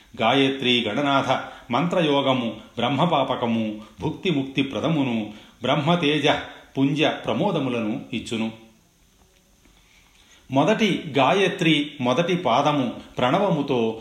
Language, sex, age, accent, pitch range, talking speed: Telugu, male, 40-59, native, 115-150 Hz, 65 wpm